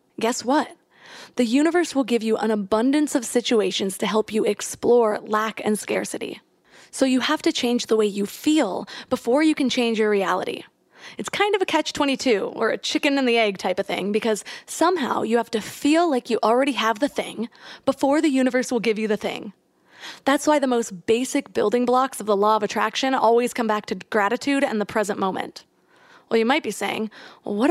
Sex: female